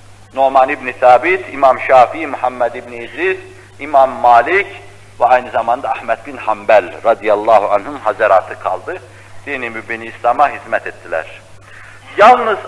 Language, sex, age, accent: Turkish, male, 60-79, native